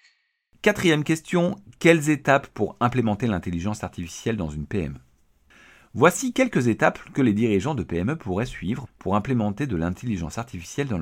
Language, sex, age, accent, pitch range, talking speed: French, male, 50-69, French, 85-145 Hz, 145 wpm